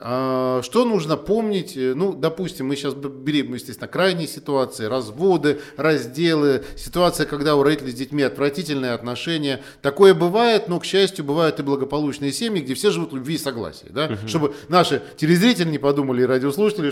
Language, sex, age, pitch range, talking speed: Russian, male, 40-59, 130-190 Hz, 165 wpm